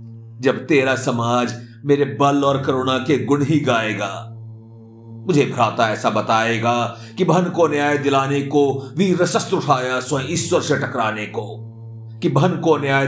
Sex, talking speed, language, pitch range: male, 140 wpm, Hindi, 115-145 Hz